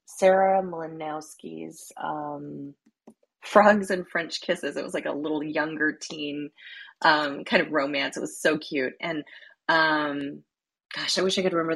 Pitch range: 145-180 Hz